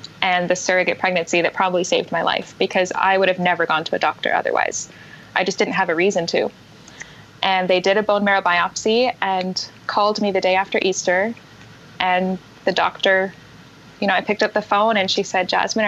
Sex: female